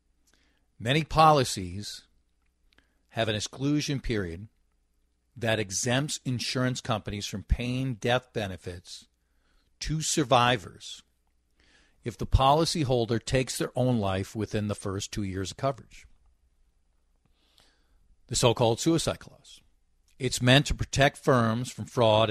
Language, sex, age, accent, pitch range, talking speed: English, male, 50-69, American, 90-120 Hz, 110 wpm